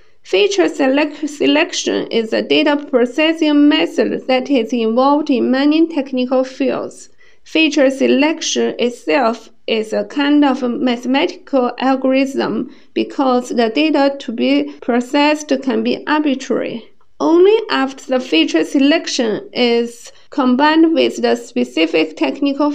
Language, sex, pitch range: Chinese, female, 240-285 Hz